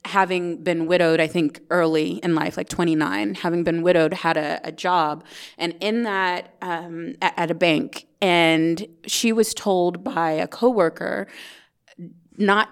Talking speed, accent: 155 wpm, American